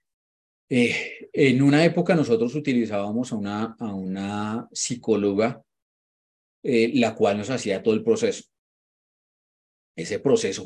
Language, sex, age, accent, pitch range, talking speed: Spanish, male, 30-49, Colombian, 100-155 Hz, 120 wpm